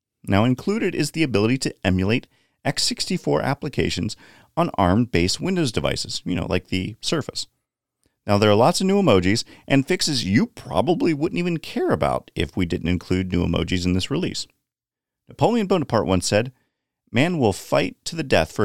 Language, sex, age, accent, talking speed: English, male, 40-59, American, 170 wpm